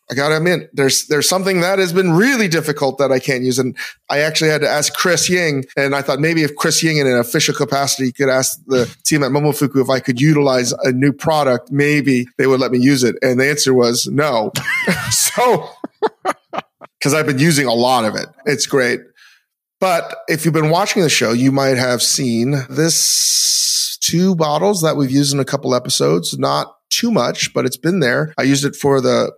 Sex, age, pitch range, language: male, 30-49, 130-155 Hz, English